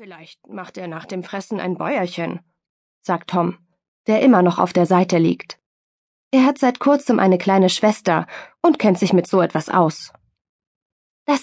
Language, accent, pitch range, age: German, German, 180-255 Hz, 20-39